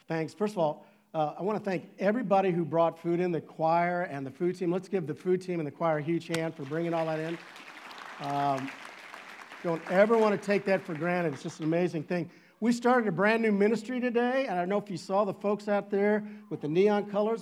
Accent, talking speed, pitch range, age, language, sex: American, 250 wpm, 160-200 Hz, 50-69, English, male